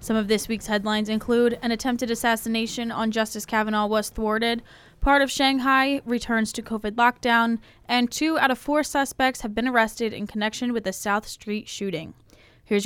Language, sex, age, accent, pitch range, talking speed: English, female, 10-29, American, 205-240 Hz, 175 wpm